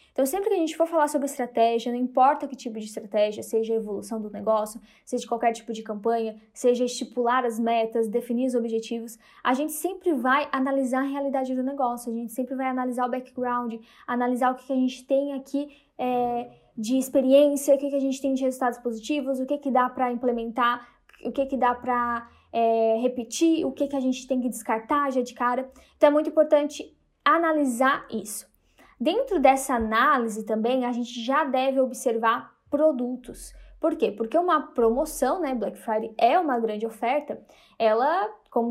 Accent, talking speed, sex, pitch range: Brazilian, 185 wpm, female, 240-305 Hz